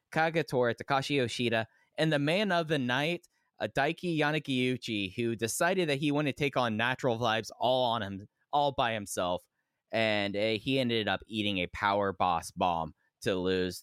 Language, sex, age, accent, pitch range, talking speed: English, male, 20-39, American, 100-135 Hz, 170 wpm